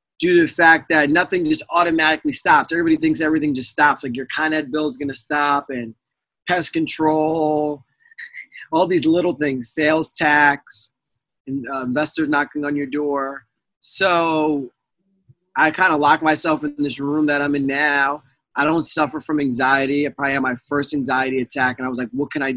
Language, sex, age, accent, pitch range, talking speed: English, male, 20-39, American, 140-170 Hz, 190 wpm